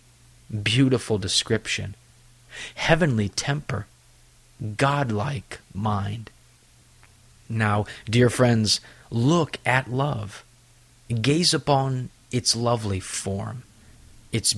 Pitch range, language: 105-130 Hz, English